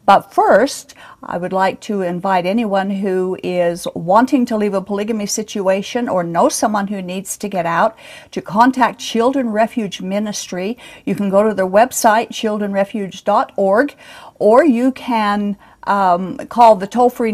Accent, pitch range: American, 190-235 Hz